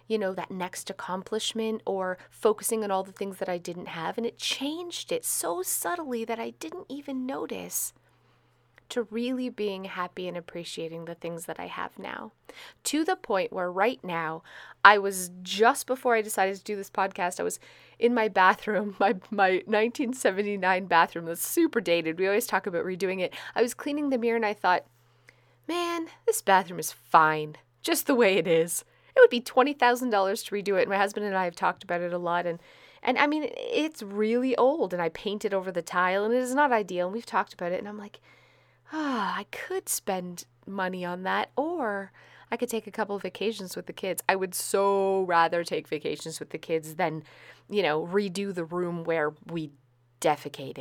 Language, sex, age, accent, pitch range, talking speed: English, female, 30-49, American, 175-240 Hz, 205 wpm